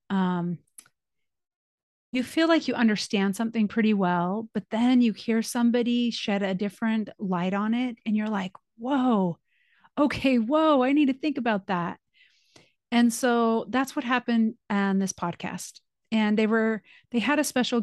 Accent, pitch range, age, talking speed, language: American, 200-250 Hz, 30-49, 160 wpm, English